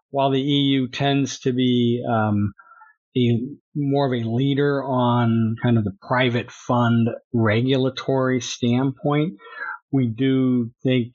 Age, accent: 50-69, American